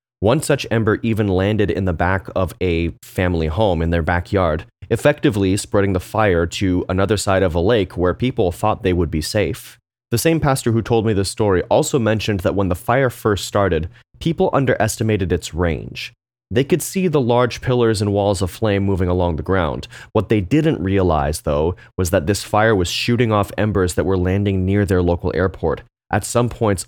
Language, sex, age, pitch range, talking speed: English, male, 30-49, 90-115 Hz, 200 wpm